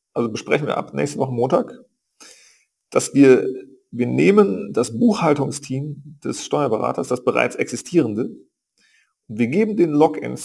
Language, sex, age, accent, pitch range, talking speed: German, male, 40-59, German, 130-205 Hz, 130 wpm